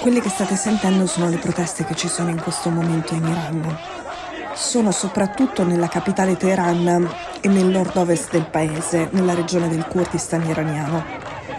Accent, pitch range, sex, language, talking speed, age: native, 170-195 Hz, female, Italian, 160 wpm, 20-39